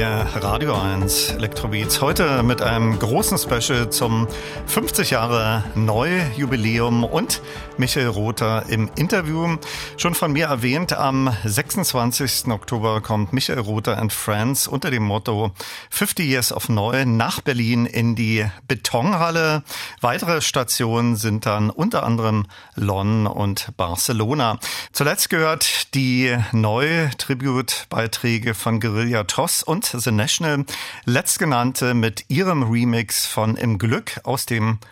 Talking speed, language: 120 wpm, German